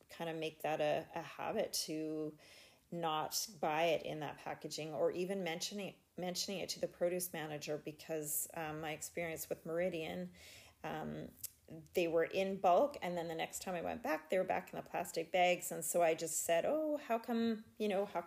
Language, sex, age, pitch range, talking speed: English, female, 30-49, 155-180 Hz, 195 wpm